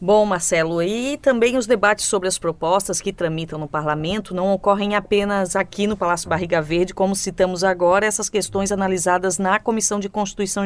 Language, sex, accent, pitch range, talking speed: Portuguese, female, Brazilian, 185-245 Hz, 175 wpm